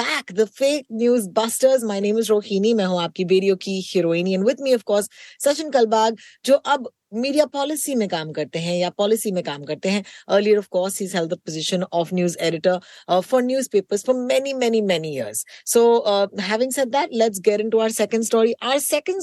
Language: Hindi